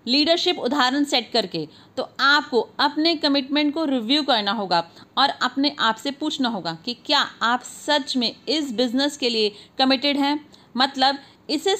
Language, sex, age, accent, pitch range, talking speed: Hindi, female, 40-59, native, 235-290 Hz, 160 wpm